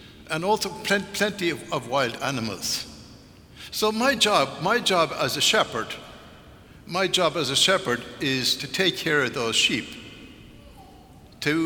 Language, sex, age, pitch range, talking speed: English, male, 60-79, 135-175 Hz, 145 wpm